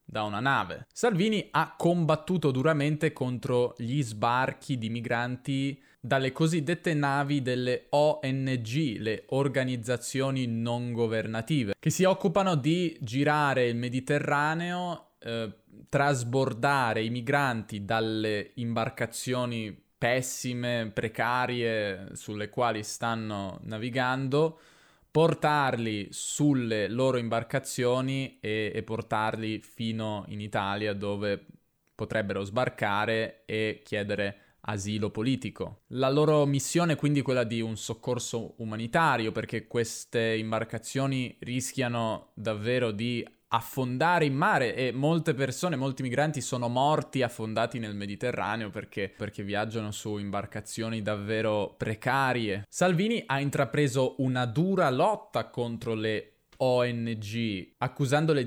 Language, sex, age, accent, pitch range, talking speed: Italian, male, 20-39, native, 110-140 Hz, 105 wpm